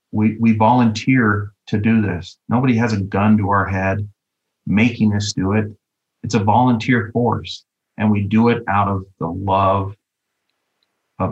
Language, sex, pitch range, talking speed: English, male, 95-110 Hz, 160 wpm